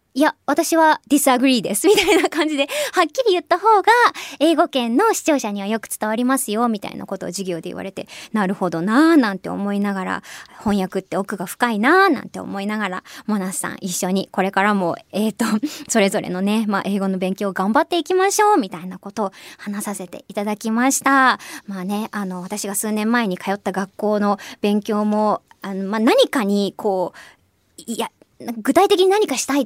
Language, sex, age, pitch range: Japanese, male, 20-39, 200-320 Hz